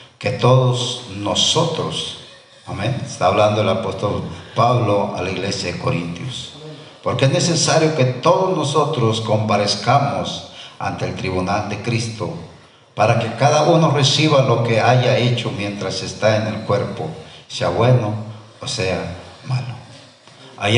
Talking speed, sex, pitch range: 135 wpm, male, 110-140 Hz